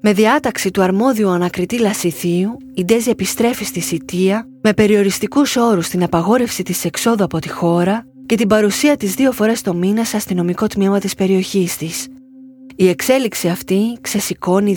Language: Greek